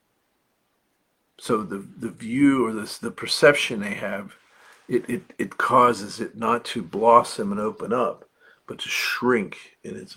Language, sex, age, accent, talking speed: English, male, 50-69, American, 155 wpm